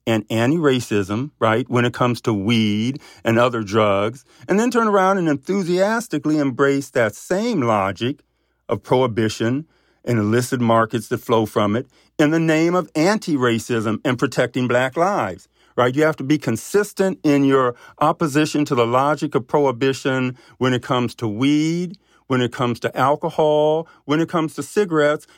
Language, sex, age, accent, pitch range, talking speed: English, male, 50-69, American, 120-150 Hz, 160 wpm